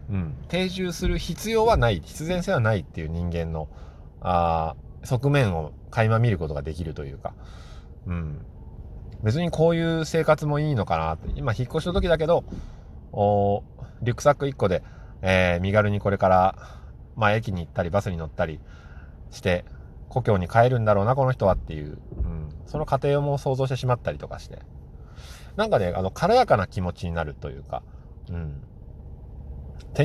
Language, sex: Japanese, male